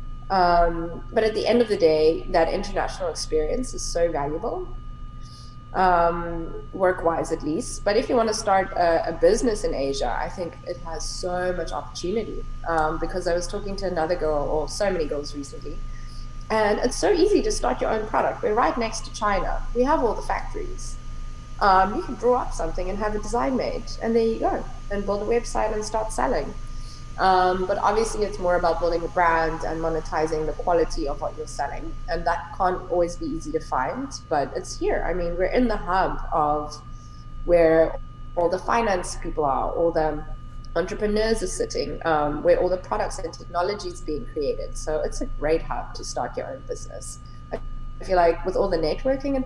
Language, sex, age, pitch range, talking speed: English, female, 20-39, 155-210 Hz, 200 wpm